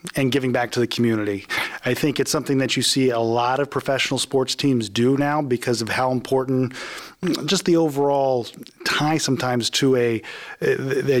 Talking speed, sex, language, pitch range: 175 wpm, male, English, 120-145 Hz